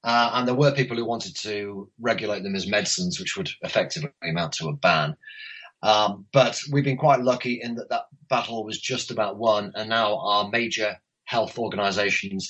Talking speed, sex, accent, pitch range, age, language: 185 wpm, male, British, 110-140 Hz, 30-49, English